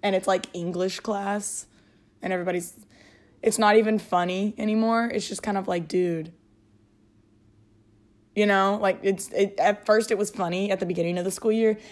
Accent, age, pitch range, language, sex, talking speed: American, 20-39, 175-235 Hz, English, female, 175 wpm